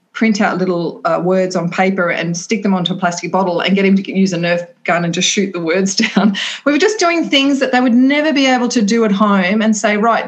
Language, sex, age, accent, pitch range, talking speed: English, female, 40-59, Australian, 180-220 Hz, 270 wpm